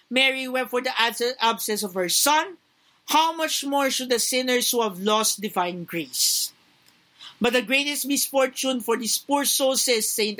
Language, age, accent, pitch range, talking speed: Filipino, 50-69, native, 230-295 Hz, 165 wpm